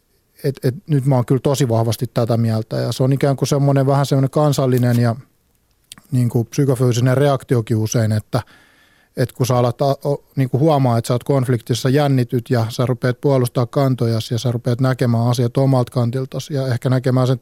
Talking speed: 190 wpm